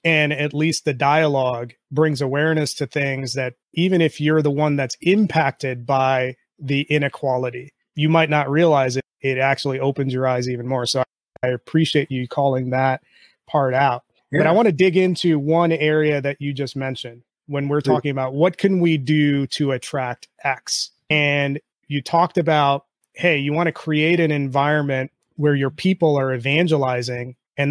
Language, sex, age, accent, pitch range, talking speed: English, male, 30-49, American, 130-155 Hz, 175 wpm